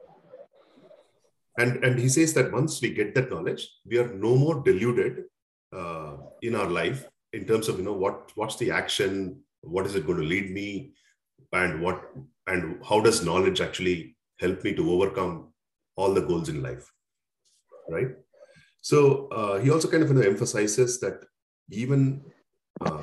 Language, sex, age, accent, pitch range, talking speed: English, male, 40-59, Indian, 95-145 Hz, 165 wpm